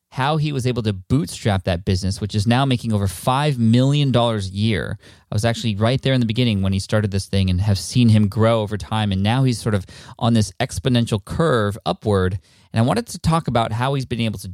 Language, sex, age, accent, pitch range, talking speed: English, male, 20-39, American, 100-125 Hz, 240 wpm